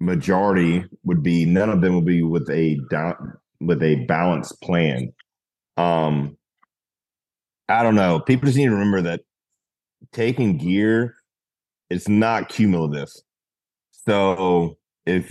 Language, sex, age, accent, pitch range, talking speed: English, male, 30-49, American, 85-110 Hz, 125 wpm